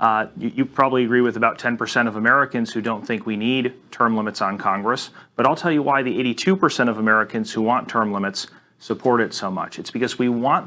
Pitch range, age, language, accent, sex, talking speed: 110-130 Hz, 30-49, English, American, male, 225 wpm